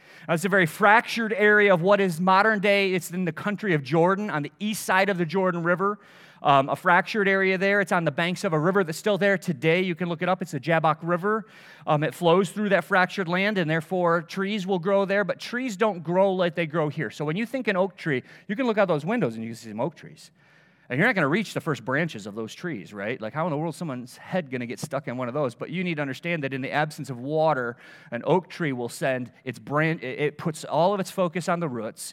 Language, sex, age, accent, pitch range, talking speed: English, male, 30-49, American, 125-185 Hz, 275 wpm